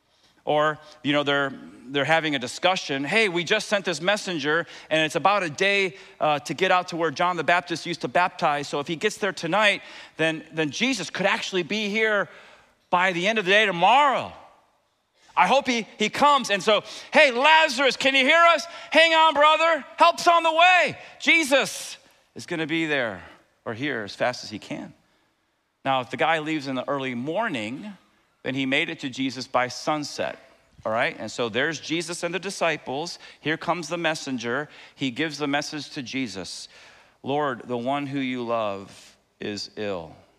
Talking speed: 190 wpm